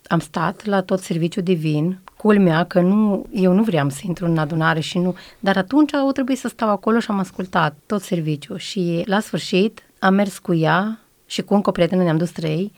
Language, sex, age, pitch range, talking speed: Romanian, female, 30-49, 175-200 Hz, 210 wpm